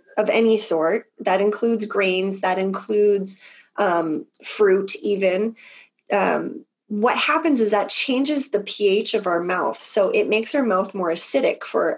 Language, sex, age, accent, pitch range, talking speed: English, female, 30-49, American, 200-260 Hz, 150 wpm